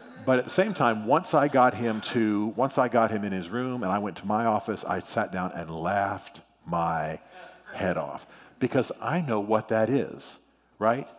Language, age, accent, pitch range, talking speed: English, 40-59, American, 95-120 Hz, 205 wpm